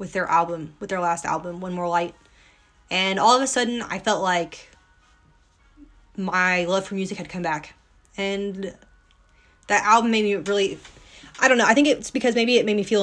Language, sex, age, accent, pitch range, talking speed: English, female, 20-39, American, 175-220 Hz, 200 wpm